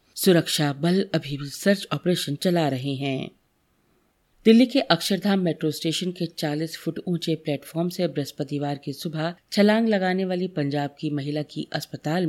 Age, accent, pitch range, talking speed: 40-59, native, 150-185 Hz, 150 wpm